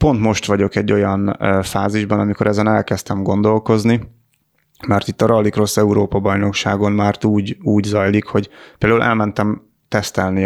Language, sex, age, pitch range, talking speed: Hungarian, male, 30-49, 100-110 Hz, 140 wpm